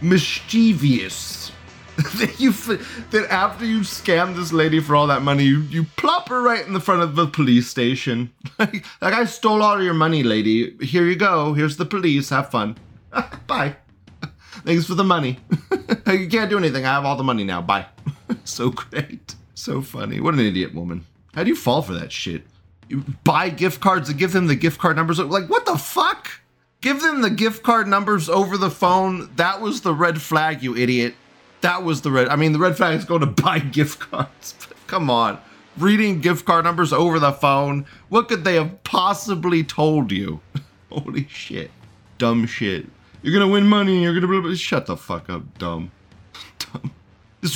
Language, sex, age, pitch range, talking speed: English, male, 30-49, 120-185 Hz, 195 wpm